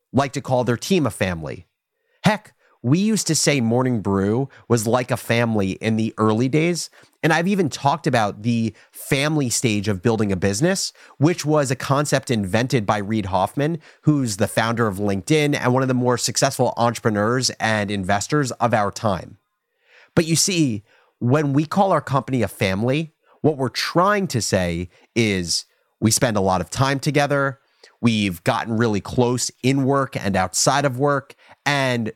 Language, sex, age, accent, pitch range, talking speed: English, male, 30-49, American, 110-150 Hz, 175 wpm